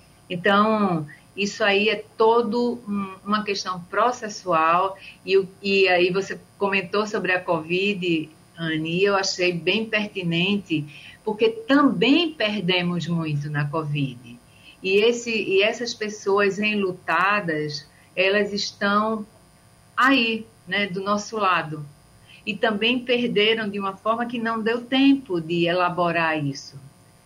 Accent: Brazilian